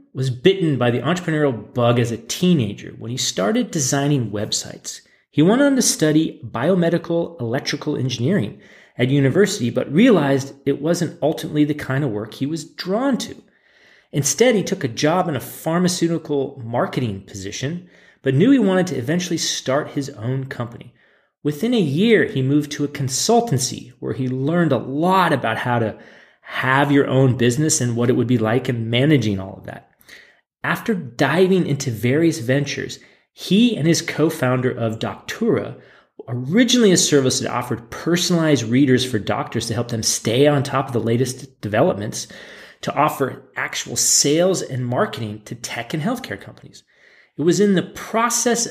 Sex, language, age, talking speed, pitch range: male, English, 30-49, 165 wpm, 125-170 Hz